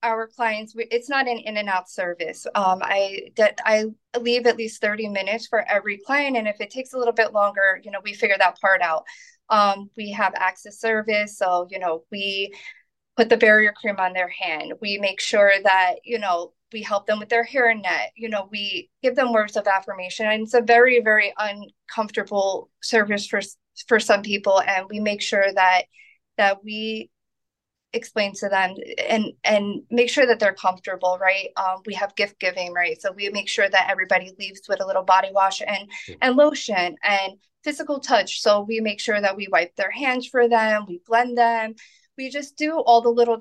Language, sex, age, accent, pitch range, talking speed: English, female, 20-39, American, 200-235 Hz, 205 wpm